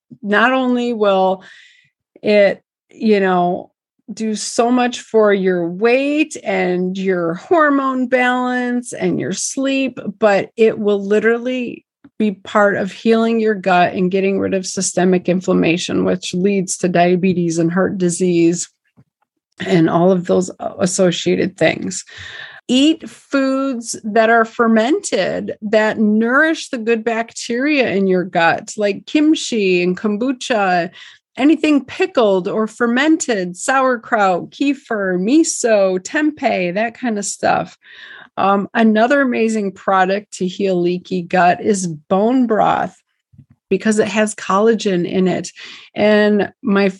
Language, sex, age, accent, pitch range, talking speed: English, female, 40-59, American, 195-245 Hz, 125 wpm